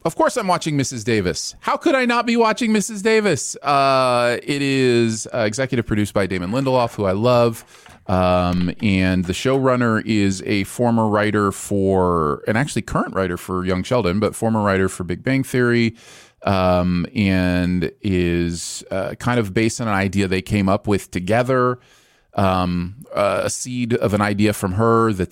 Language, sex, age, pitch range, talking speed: English, male, 30-49, 95-130 Hz, 175 wpm